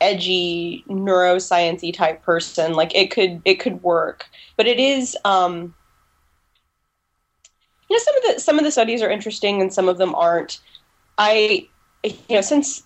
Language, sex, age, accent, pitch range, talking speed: English, female, 20-39, American, 170-200 Hz, 160 wpm